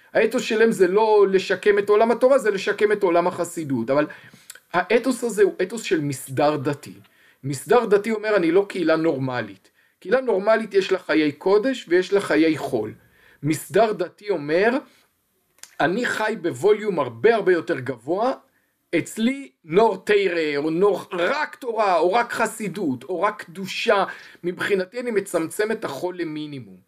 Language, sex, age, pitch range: Hebrew, male, 50-69, 155-225 Hz